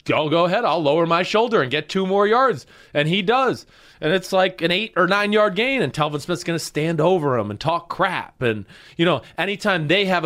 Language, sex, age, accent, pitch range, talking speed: English, male, 20-39, American, 135-205 Hz, 235 wpm